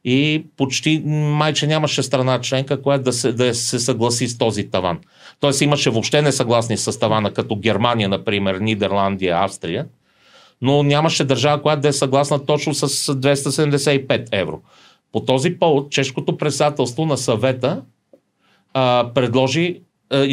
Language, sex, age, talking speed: Bulgarian, male, 30-49, 140 wpm